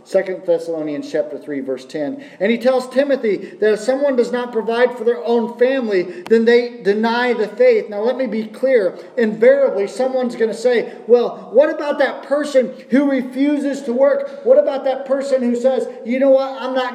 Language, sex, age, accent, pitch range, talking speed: English, male, 40-59, American, 210-260 Hz, 195 wpm